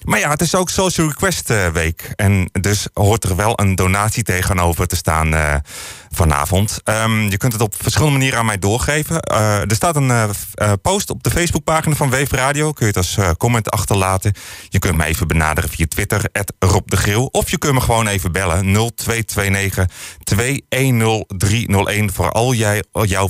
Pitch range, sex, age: 90-115 Hz, male, 30-49